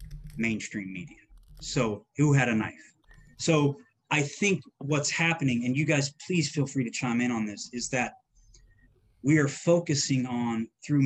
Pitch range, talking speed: 115-145 Hz, 165 wpm